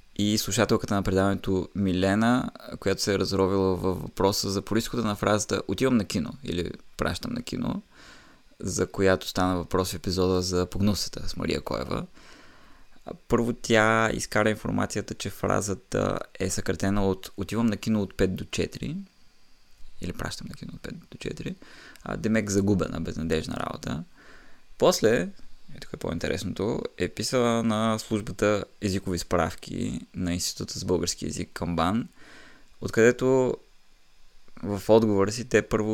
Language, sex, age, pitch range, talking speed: Bulgarian, male, 20-39, 95-115 Hz, 140 wpm